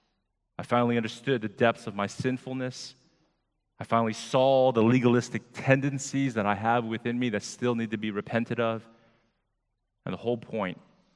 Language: English